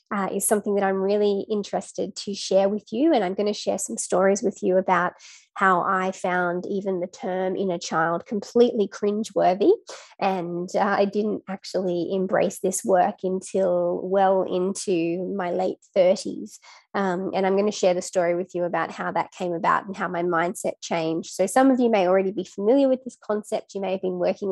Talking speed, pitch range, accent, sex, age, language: 195 wpm, 180-200 Hz, Australian, female, 20-39, English